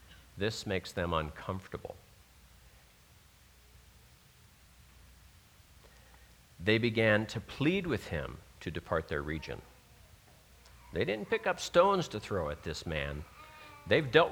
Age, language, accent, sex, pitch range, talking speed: 50-69, English, American, male, 90-120 Hz, 110 wpm